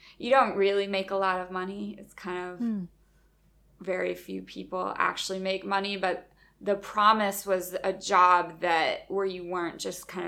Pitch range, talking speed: 180-210 Hz, 170 wpm